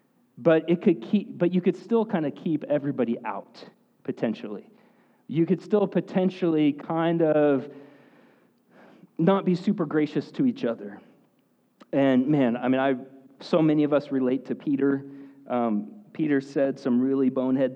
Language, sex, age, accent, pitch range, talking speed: English, male, 40-59, American, 130-180 Hz, 150 wpm